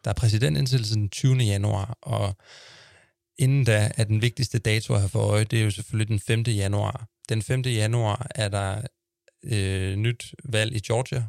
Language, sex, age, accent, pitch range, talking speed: Danish, male, 30-49, native, 105-120 Hz, 185 wpm